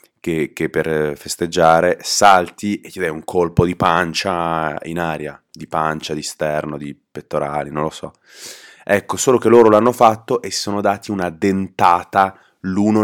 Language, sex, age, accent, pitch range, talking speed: Italian, male, 30-49, native, 85-100 Hz, 165 wpm